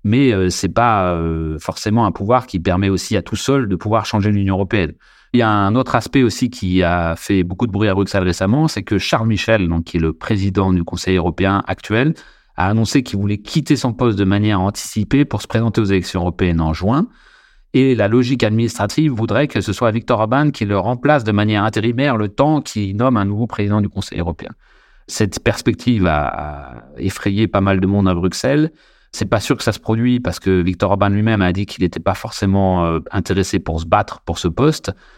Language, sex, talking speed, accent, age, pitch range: French, male, 220 wpm, French, 30-49, 90-115 Hz